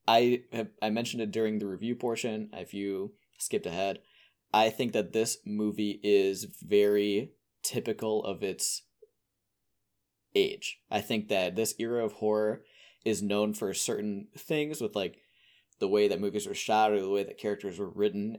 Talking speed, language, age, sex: 165 wpm, English, 20-39, male